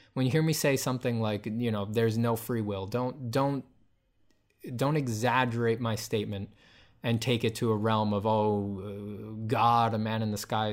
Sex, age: male, 20-39